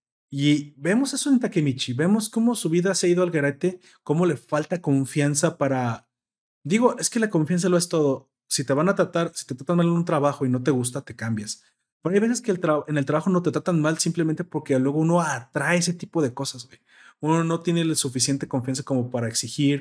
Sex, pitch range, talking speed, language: male, 130-170 Hz, 230 wpm, Spanish